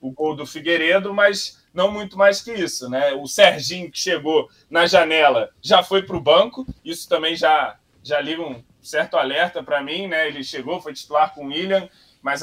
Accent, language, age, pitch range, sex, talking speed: Brazilian, Portuguese, 20-39, 145-185 Hz, male, 200 wpm